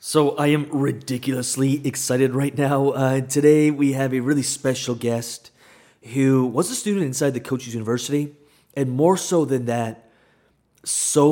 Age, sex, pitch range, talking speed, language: 30-49, male, 120-145 Hz, 155 wpm, English